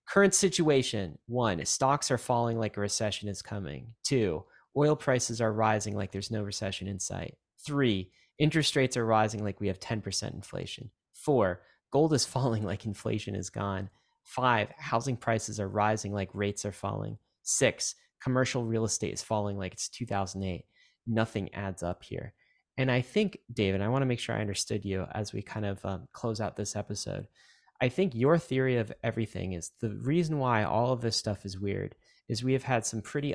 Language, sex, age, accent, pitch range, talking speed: English, male, 30-49, American, 100-125 Hz, 190 wpm